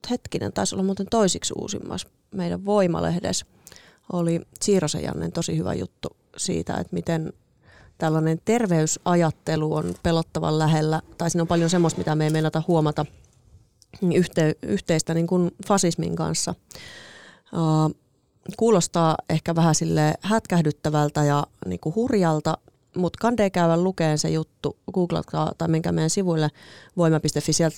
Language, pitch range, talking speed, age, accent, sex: Finnish, 155-180 Hz, 125 wpm, 30-49, native, female